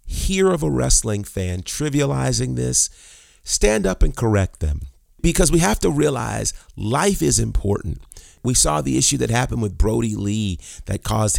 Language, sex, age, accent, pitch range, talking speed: English, male, 30-49, American, 90-120 Hz, 165 wpm